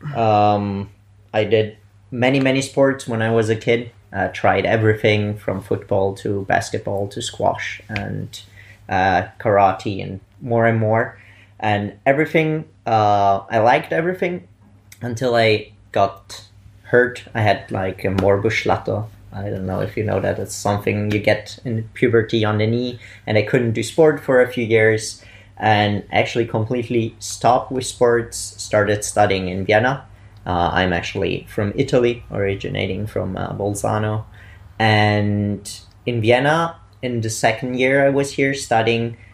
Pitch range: 100-115 Hz